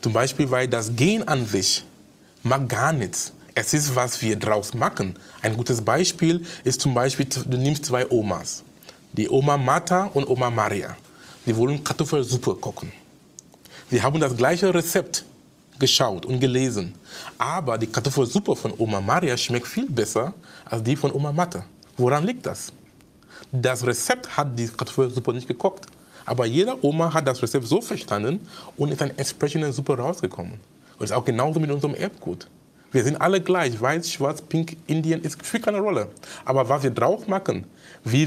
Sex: male